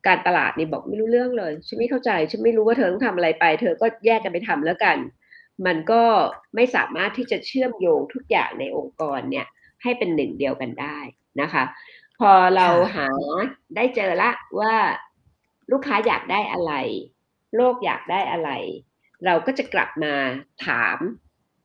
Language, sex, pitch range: Thai, female, 190-255 Hz